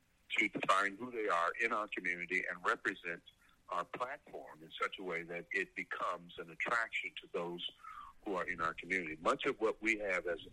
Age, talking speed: 60-79, 195 wpm